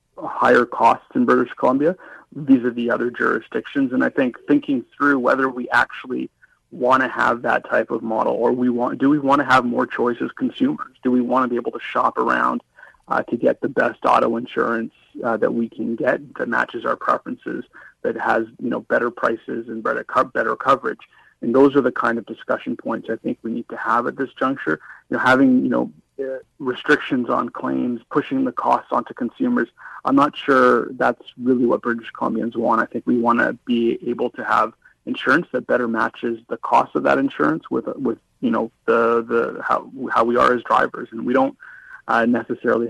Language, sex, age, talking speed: English, male, 30-49, 205 wpm